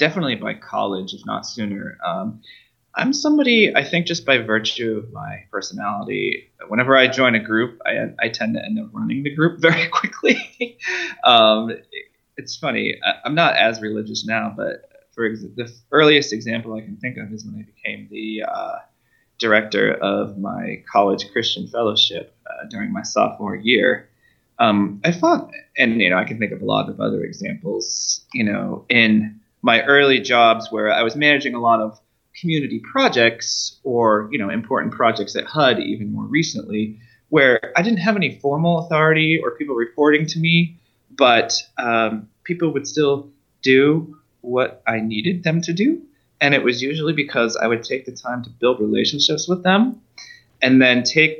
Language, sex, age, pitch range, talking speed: English, male, 20-39, 115-180 Hz, 175 wpm